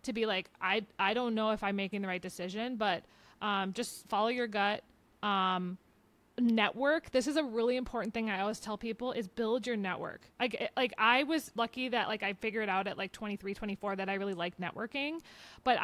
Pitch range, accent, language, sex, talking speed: 200-240 Hz, American, English, female, 210 wpm